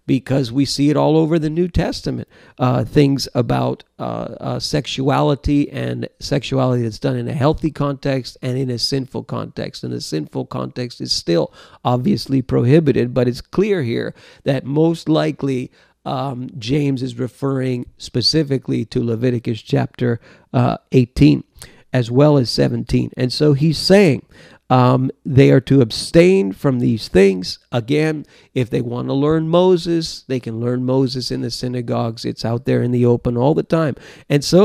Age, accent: 50-69, American